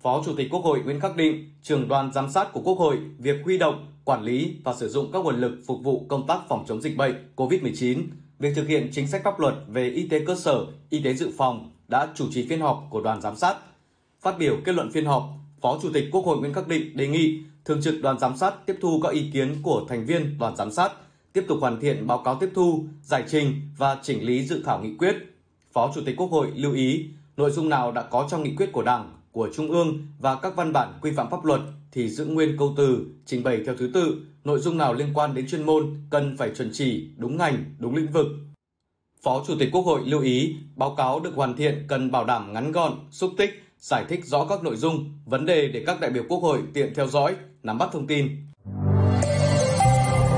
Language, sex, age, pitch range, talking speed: Vietnamese, male, 20-39, 130-155 Hz, 245 wpm